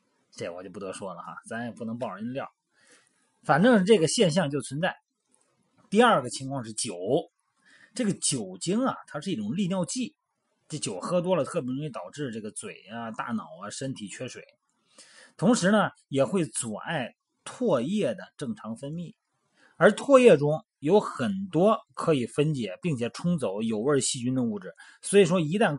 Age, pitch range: 30-49, 140-205 Hz